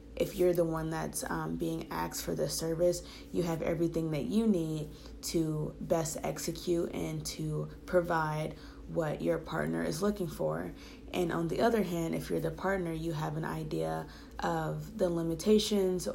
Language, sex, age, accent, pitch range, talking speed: English, female, 20-39, American, 155-180 Hz, 165 wpm